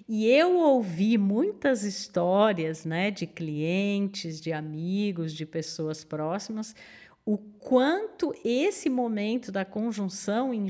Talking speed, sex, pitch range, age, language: 110 wpm, female, 190-255 Hz, 50-69, Portuguese